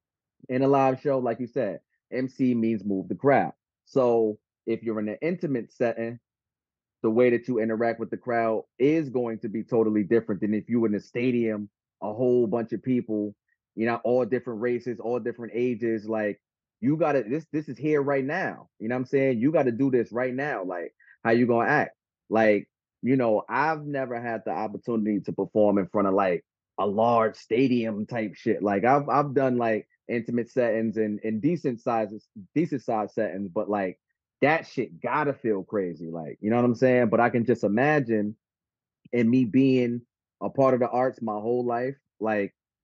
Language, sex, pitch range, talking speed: English, male, 110-125 Hz, 195 wpm